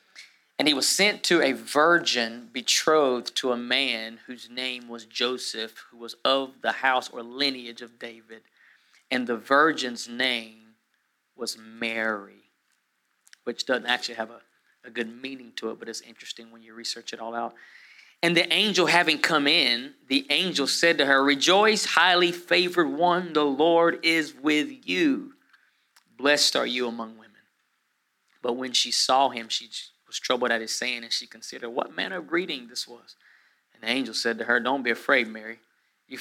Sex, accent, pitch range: male, American, 115-145 Hz